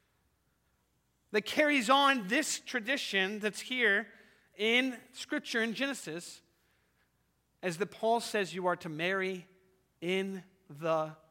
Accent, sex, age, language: American, male, 40-59, English